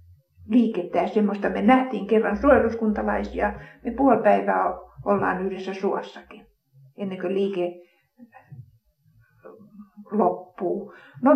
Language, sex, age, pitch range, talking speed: Finnish, female, 60-79, 195-250 Hz, 85 wpm